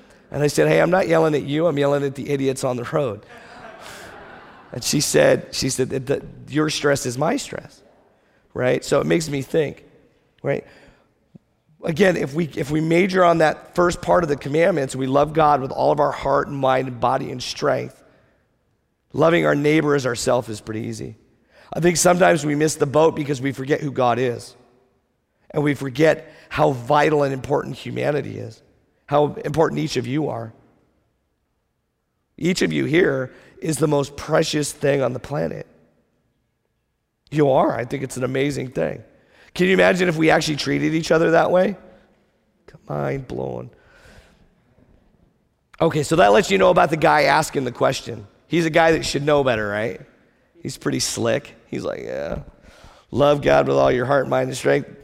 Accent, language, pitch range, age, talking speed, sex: American, English, 125-160 Hz, 50-69, 180 wpm, male